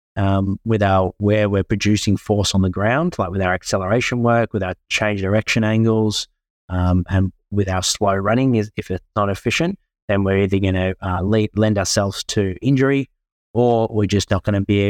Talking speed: 195 wpm